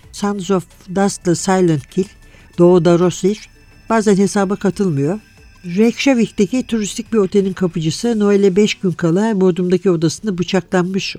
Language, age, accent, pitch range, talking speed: Turkish, 60-79, native, 165-205 Hz, 120 wpm